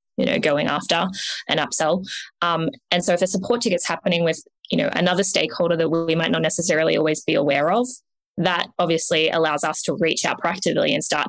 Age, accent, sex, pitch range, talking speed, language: 20-39, Australian, female, 160-210 Hz, 200 wpm, English